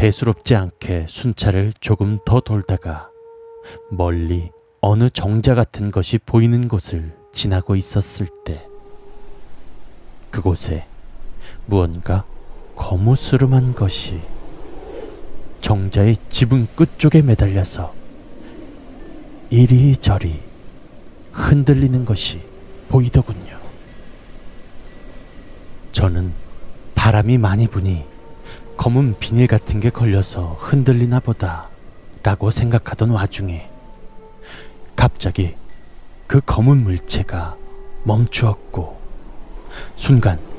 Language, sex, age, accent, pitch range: Korean, male, 30-49, native, 95-135 Hz